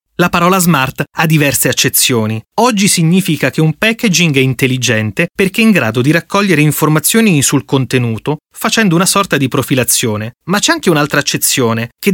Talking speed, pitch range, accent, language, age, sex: 165 wpm, 130-185 Hz, native, Italian, 30-49, male